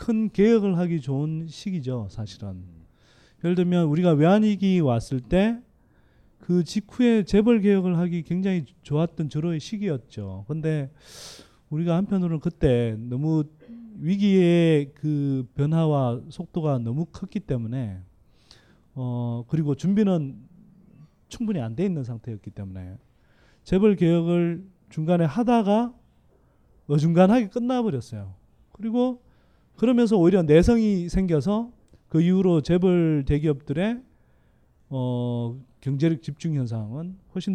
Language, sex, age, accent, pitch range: Korean, male, 30-49, native, 135-205 Hz